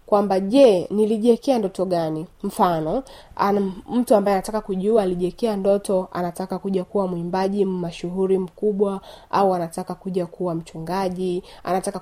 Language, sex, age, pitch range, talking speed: Swahili, female, 30-49, 185-230 Hz, 125 wpm